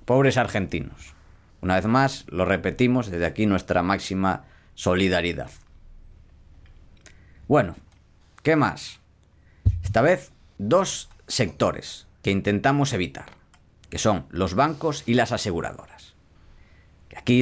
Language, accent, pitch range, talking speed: Spanish, Spanish, 85-115 Hz, 105 wpm